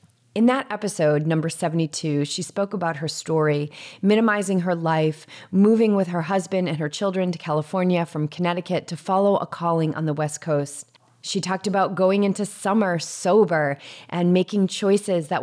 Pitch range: 150-190 Hz